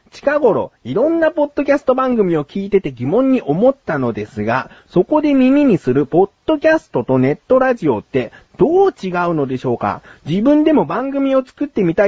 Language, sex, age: Japanese, male, 40-59